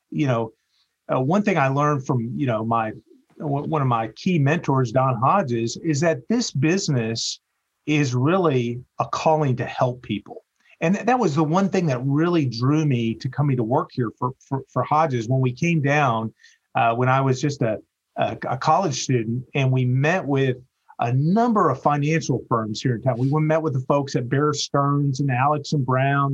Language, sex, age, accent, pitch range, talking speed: English, male, 40-59, American, 125-155 Hz, 200 wpm